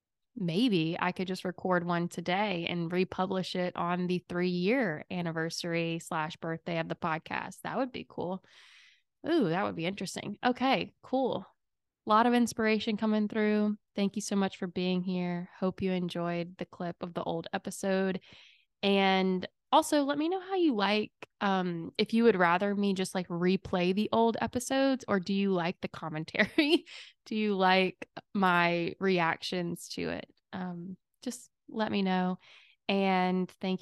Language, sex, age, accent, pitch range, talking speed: English, female, 20-39, American, 175-200 Hz, 165 wpm